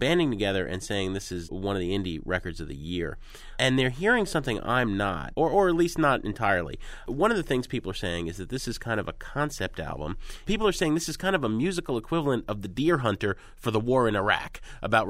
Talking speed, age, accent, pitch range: 245 wpm, 30-49, American, 95-130 Hz